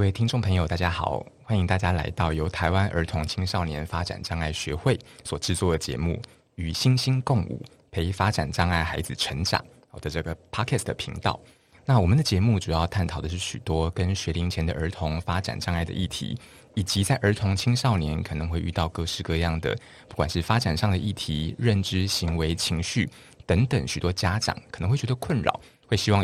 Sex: male